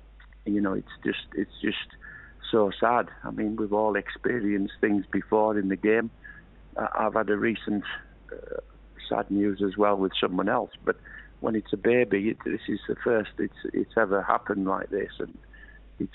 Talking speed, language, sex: 180 wpm, English, male